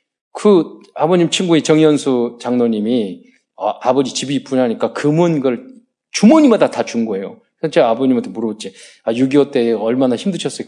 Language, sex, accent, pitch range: Korean, male, native, 125-200 Hz